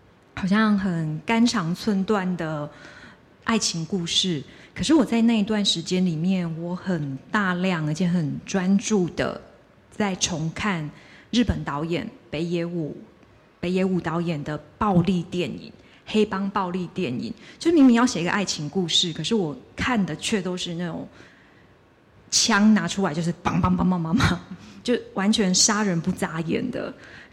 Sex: female